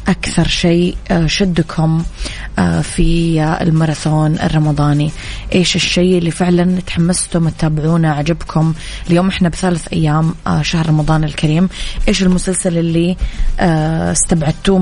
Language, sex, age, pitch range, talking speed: Arabic, female, 20-39, 160-185 Hz, 95 wpm